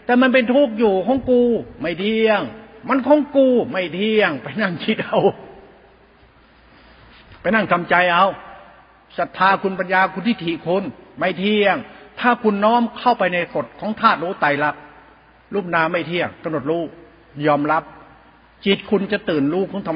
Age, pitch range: 60-79, 170-220 Hz